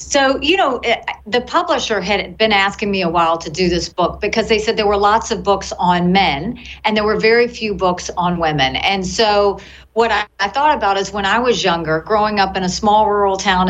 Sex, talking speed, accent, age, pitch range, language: female, 230 wpm, American, 40-59, 185-230 Hz, English